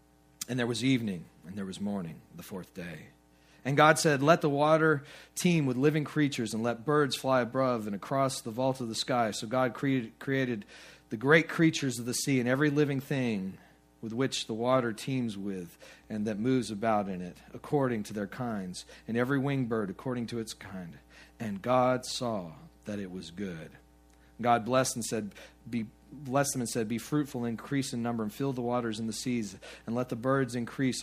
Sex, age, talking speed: male, 40-59, 200 wpm